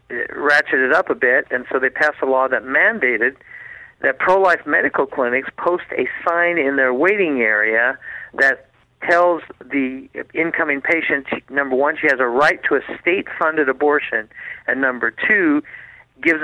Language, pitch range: English, 120-150 Hz